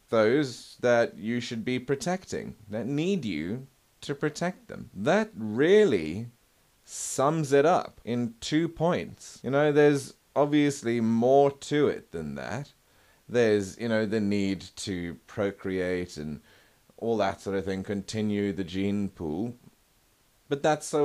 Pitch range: 105-150 Hz